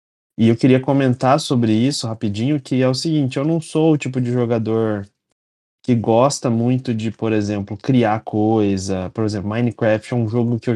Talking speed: 190 wpm